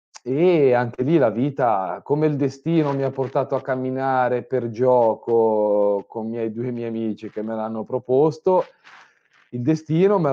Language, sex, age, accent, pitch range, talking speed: Italian, male, 30-49, native, 110-140 Hz, 165 wpm